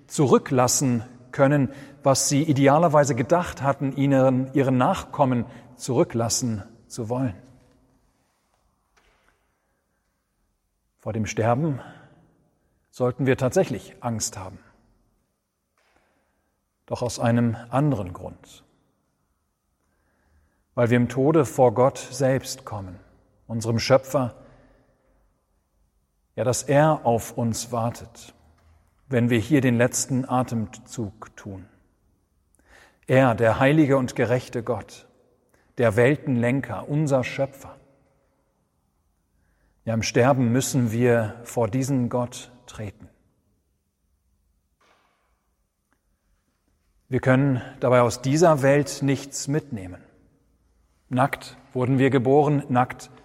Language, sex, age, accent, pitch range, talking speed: German, male, 40-59, German, 95-135 Hz, 90 wpm